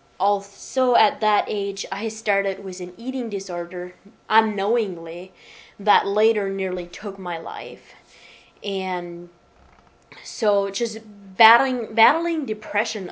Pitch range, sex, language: 180-220 Hz, female, English